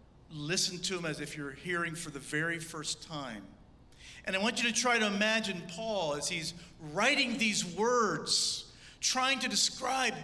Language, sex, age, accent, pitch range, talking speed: English, male, 50-69, American, 150-210 Hz, 170 wpm